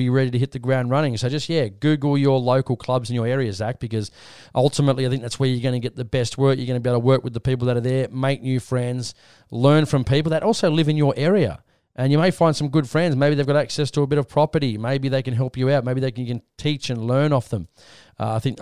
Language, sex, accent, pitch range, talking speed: English, male, Australian, 120-145 Hz, 285 wpm